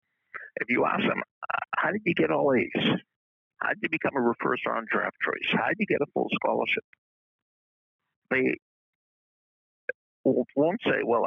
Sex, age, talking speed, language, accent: male, 60-79, 160 wpm, English, American